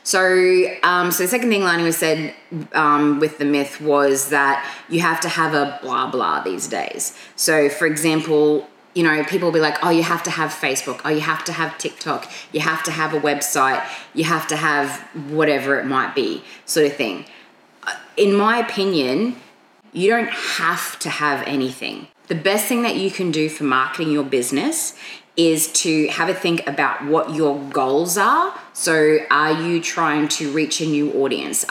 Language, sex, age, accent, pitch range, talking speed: English, female, 20-39, Australian, 145-170 Hz, 190 wpm